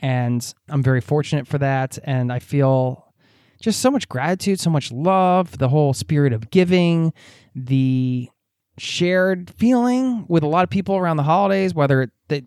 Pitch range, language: 130-185 Hz, English